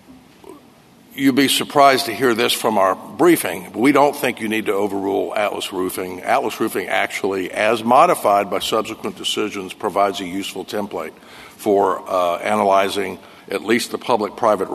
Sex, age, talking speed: male, 60-79, 150 wpm